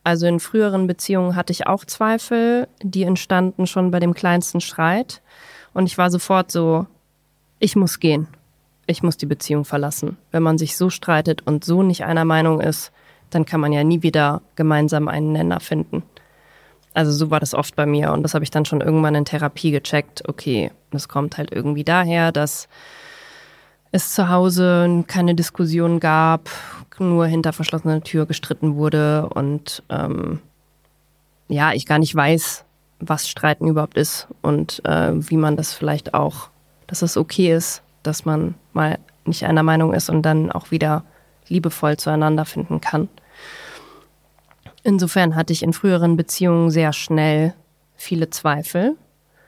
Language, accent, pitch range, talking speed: German, German, 150-175 Hz, 160 wpm